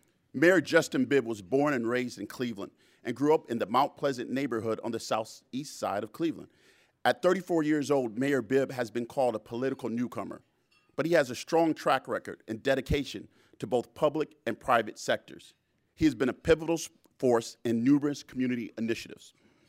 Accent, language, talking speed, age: American, English, 185 wpm, 40-59